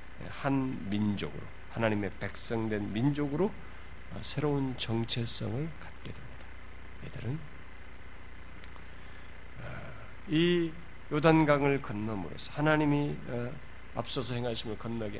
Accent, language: native, Korean